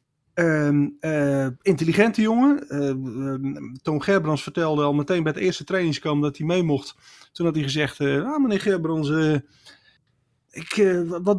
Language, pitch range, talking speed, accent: Dutch, 145-195 Hz, 165 wpm, Dutch